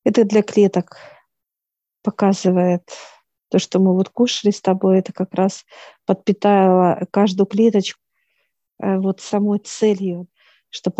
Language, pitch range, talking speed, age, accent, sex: Russian, 185-205 Hz, 115 wpm, 50-69, native, female